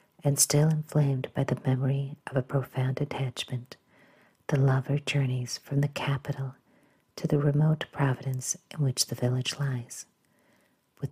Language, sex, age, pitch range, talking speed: English, female, 50-69, 130-150 Hz, 140 wpm